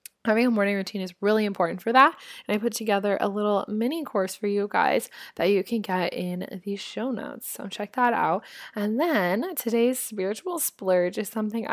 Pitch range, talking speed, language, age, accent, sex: 180-230 Hz, 200 wpm, English, 20-39, American, female